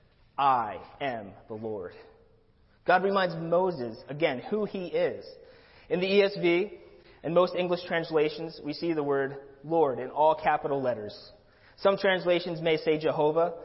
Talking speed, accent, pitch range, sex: 140 wpm, American, 145-180 Hz, male